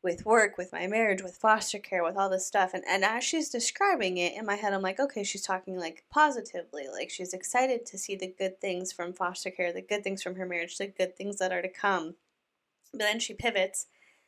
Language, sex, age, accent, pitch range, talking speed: English, female, 20-39, American, 180-205 Hz, 235 wpm